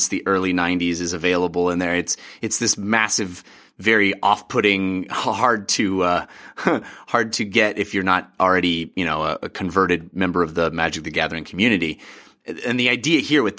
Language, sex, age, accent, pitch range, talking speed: English, male, 30-49, American, 95-135 Hz, 170 wpm